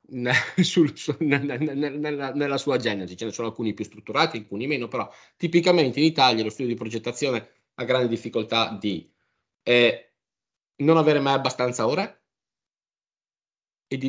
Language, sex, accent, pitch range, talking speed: Italian, male, native, 105-150 Hz, 160 wpm